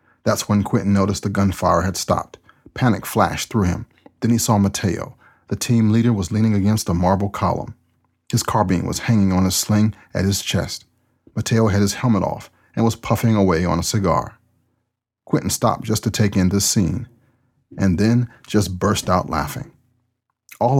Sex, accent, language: male, American, English